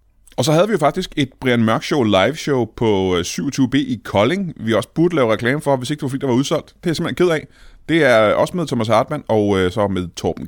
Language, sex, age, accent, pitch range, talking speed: Danish, male, 30-49, native, 100-150 Hz, 265 wpm